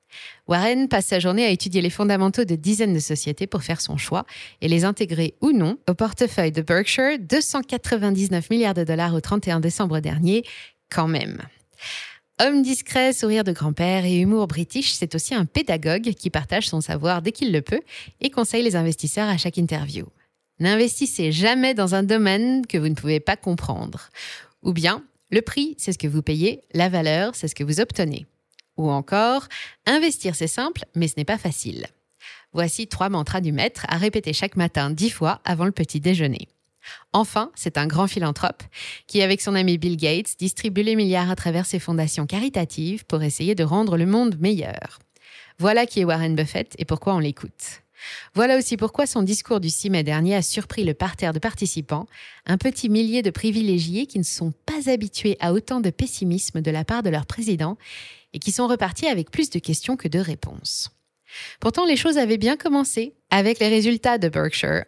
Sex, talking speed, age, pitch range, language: female, 190 wpm, 20-39, 165-225 Hz, French